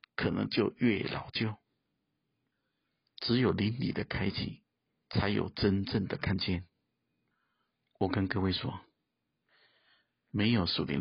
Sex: male